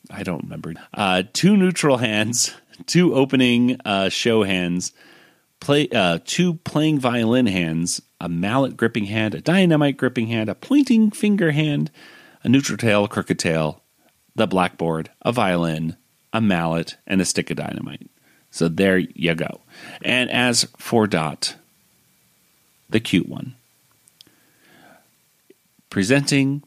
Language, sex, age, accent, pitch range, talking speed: English, male, 40-59, American, 95-140 Hz, 130 wpm